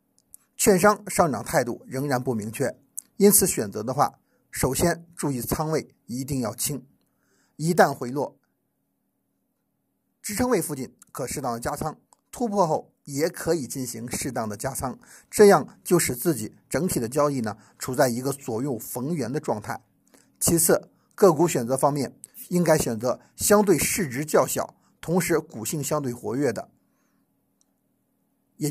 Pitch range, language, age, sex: 125-180 Hz, Chinese, 50-69, male